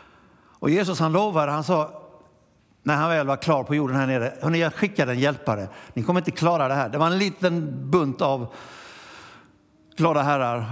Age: 60-79